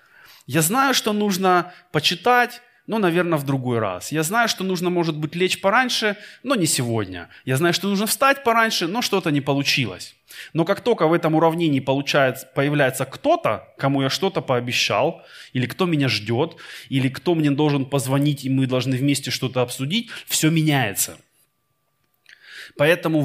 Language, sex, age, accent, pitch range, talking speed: Russian, male, 20-39, native, 125-175 Hz, 155 wpm